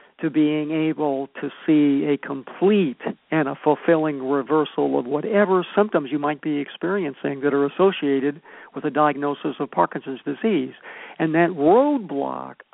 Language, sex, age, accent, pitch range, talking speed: English, male, 60-79, American, 150-195 Hz, 140 wpm